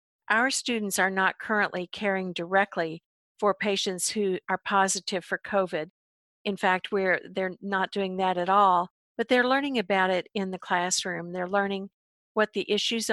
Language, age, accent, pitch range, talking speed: English, 50-69, American, 180-205 Hz, 160 wpm